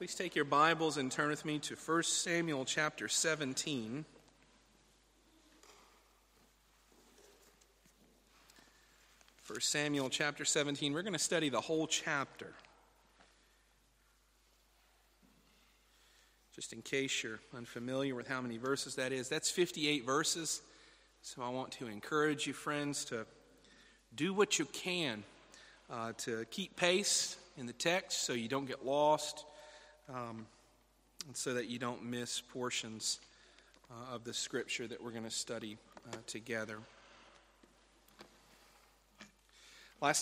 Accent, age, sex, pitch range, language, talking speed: American, 40-59, male, 125-155 Hz, English, 120 wpm